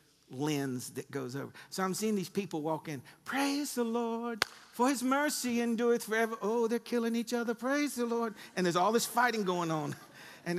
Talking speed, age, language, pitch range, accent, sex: 200 wpm, 50-69, English, 165-240 Hz, American, male